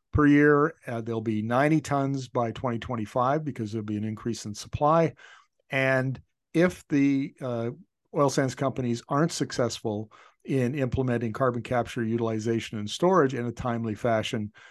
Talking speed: 145 wpm